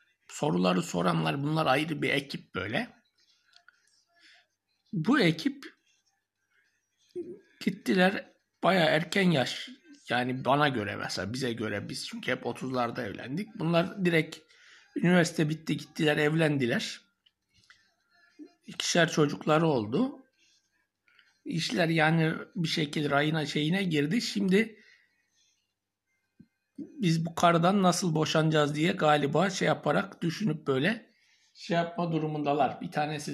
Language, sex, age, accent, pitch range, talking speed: Turkish, male, 60-79, native, 150-240 Hz, 105 wpm